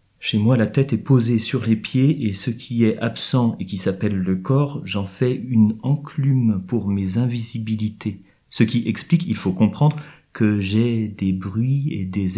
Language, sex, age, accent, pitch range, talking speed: French, male, 40-59, French, 105-140 Hz, 185 wpm